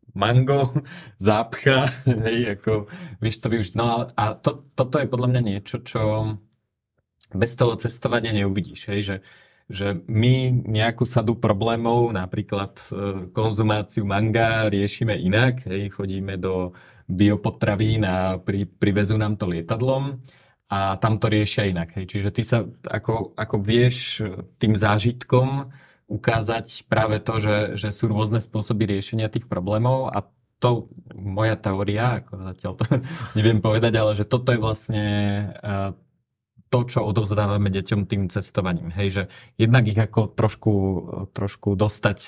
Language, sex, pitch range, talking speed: Slovak, male, 100-120 Hz, 135 wpm